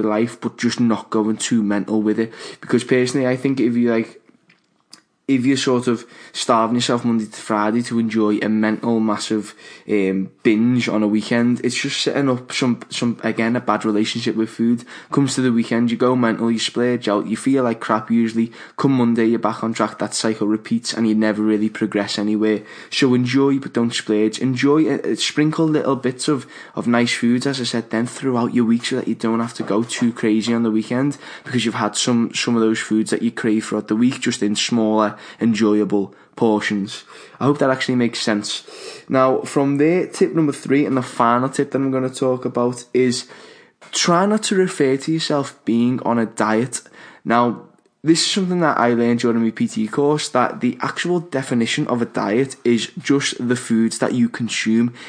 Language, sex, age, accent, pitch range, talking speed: English, male, 10-29, British, 110-130 Hz, 205 wpm